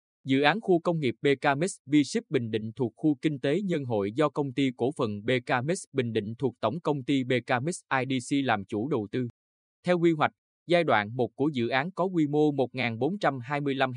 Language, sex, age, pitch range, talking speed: Vietnamese, male, 20-39, 115-155 Hz, 200 wpm